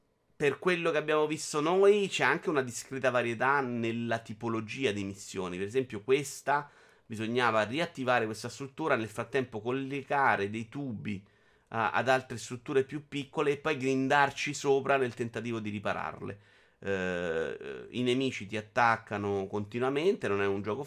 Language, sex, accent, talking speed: Italian, male, native, 145 wpm